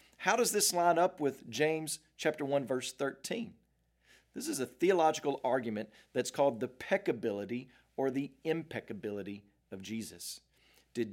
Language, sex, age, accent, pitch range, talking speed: English, male, 40-59, American, 120-170 Hz, 140 wpm